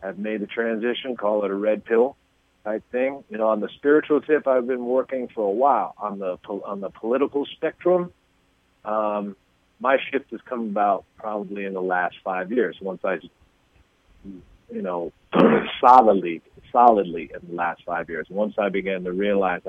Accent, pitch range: American, 95-120 Hz